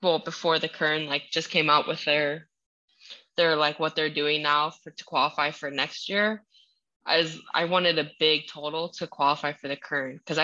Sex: female